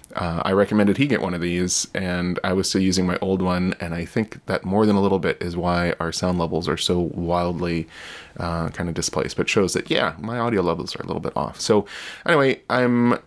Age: 20-39